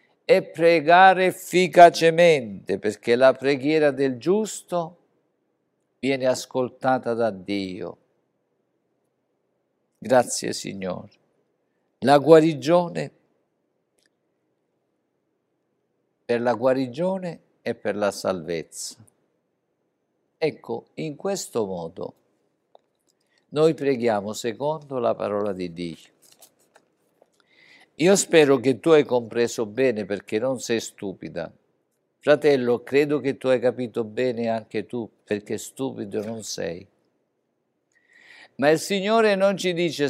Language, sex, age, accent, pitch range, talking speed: Italian, male, 50-69, native, 115-160 Hz, 95 wpm